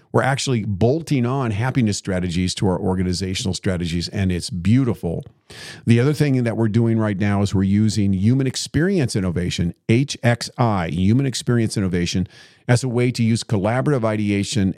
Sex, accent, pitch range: male, American, 100-130 Hz